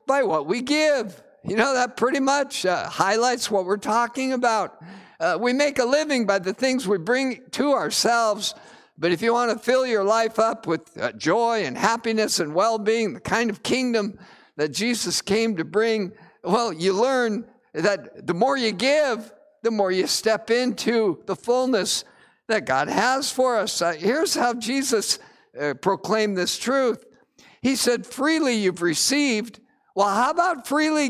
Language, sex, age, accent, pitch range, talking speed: English, male, 50-69, American, 205-255 Hz, 170 wpm